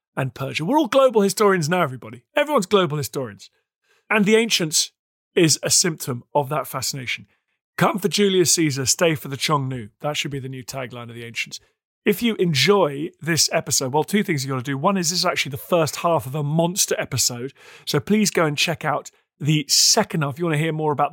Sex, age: male, 40-59